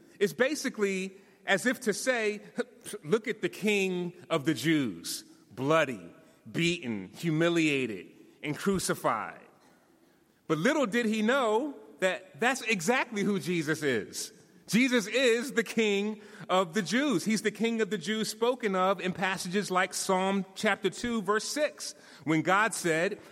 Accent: American